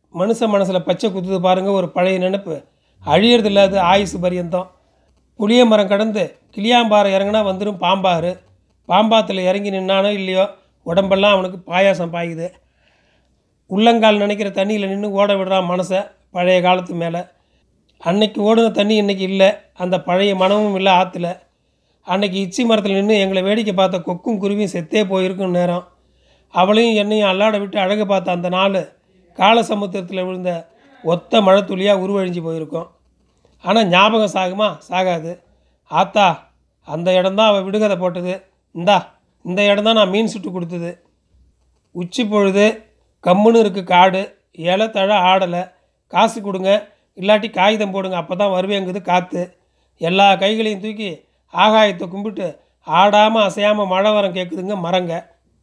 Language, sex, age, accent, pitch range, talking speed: Tamil, male, 30-49, native, 180-210 Hz, 125 wpm